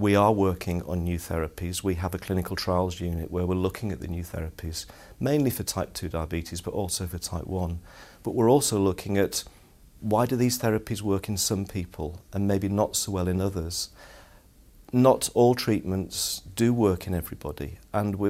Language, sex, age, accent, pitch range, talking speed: English, male, 40-59, British, 90-105 Hz, 185 wpm